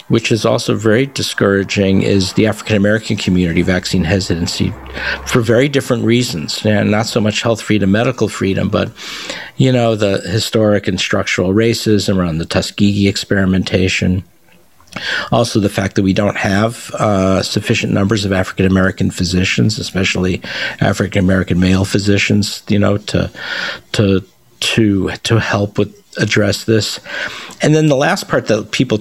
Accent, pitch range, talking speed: American, 95-115 Hz, 150 wpm